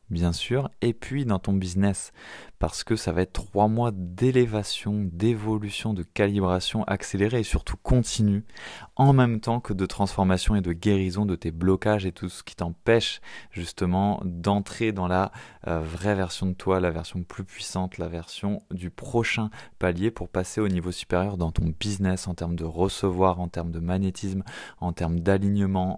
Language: French